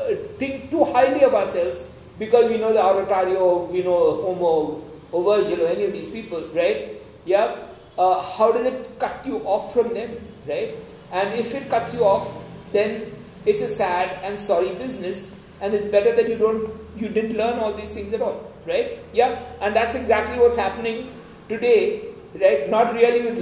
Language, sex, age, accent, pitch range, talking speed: English, male, 50-69, Indian, 190-235 Hz, 180 wpm